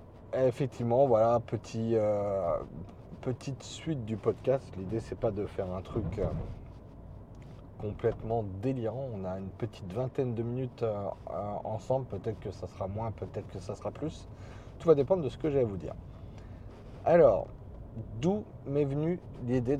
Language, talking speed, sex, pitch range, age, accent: French, 160 wpm, male, 105-130 Hz, 30-49, French